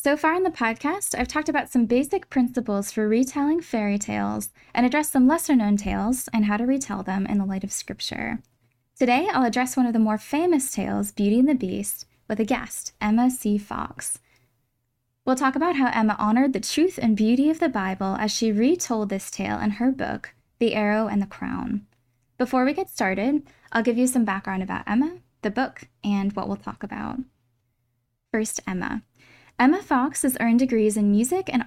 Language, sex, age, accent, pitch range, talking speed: English, female, 10-29, American, 205-260 Hz, 195 wpm